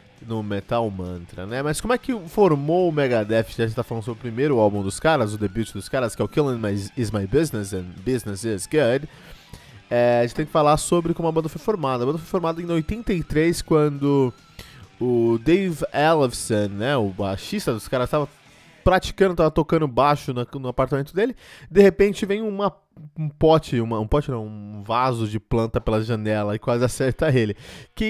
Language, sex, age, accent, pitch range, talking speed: Portuguese, male, 20-39, Brazilian, 115-175 Hz, 200 wpm